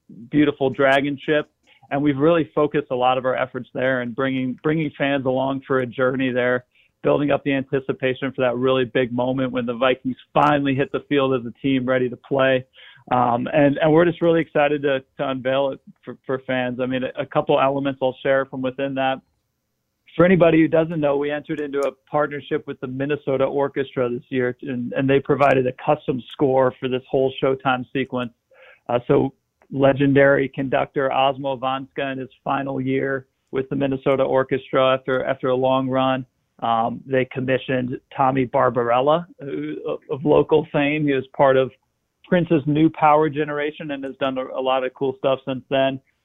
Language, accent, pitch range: English, American, 130-140 Hz